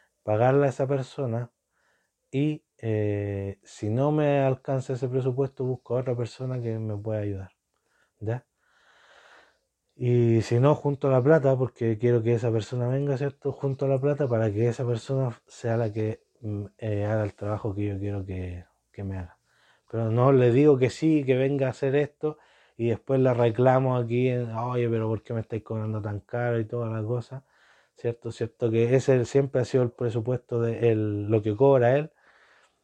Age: 20-39